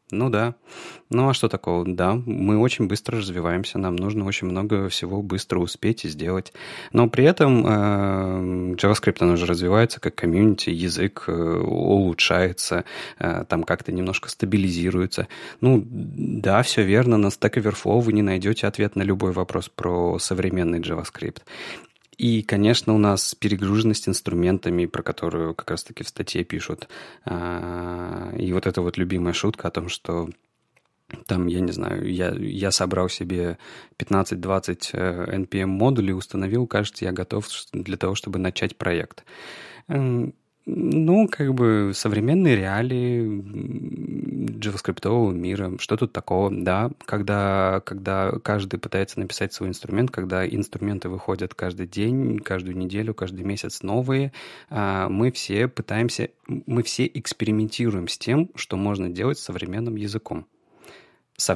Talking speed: 135 wpm